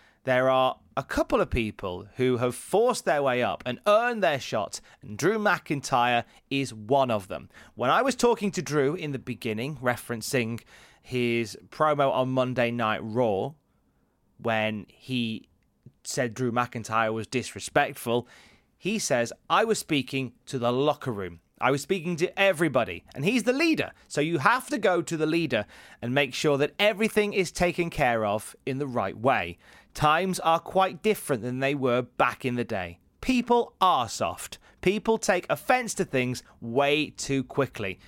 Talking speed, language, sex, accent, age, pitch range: 170 wpm, English, male, British, 30-49, 120-175 Hz